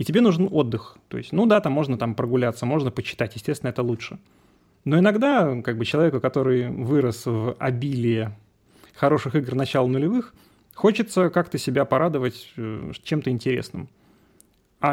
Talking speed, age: 150 wpm, 30-49